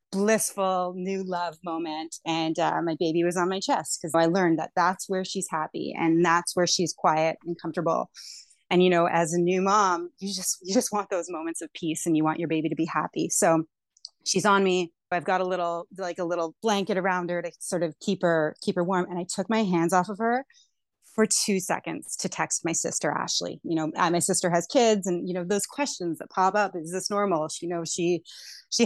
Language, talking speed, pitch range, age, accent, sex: English, 230 wpm, 170-200 Hz, 30-49, American, female